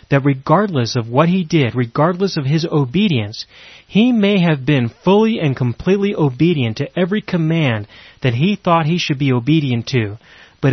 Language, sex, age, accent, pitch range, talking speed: English, male, 30-49, American, 125-155 Hz, 170 wpm